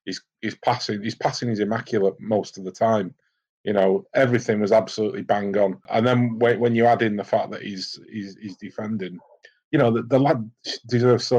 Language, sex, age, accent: English, male, 30-49, British